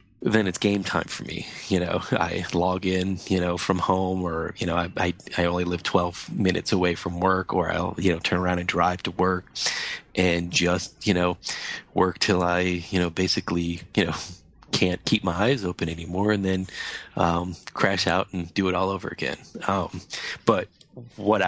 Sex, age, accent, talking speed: male, 30-49, American, 195 wpm